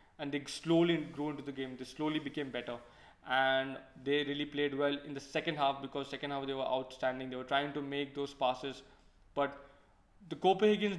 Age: 20-39